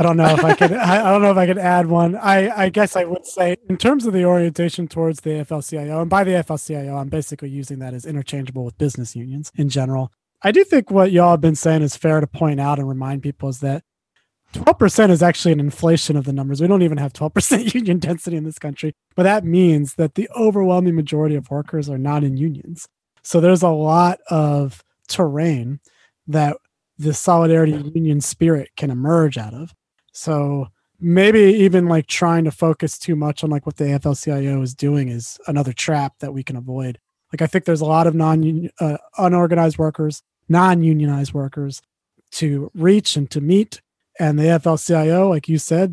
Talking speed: 195 wpm